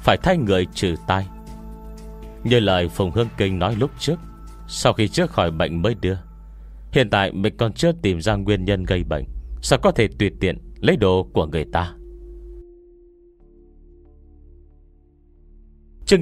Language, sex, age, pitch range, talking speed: Vietnamese, male, 30-49, 70-110 Hz, 155 wpm